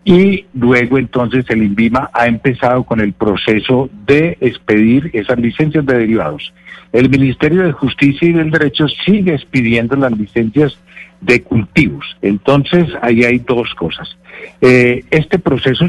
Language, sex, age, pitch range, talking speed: Spanish, male, 60-79, 110-140 Hz, 140 wpm